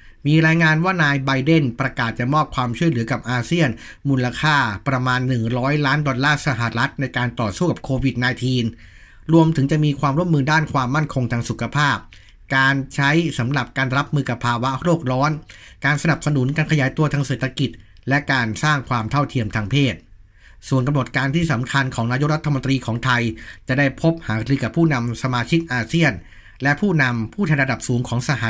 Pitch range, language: 120-150 Hz, Thai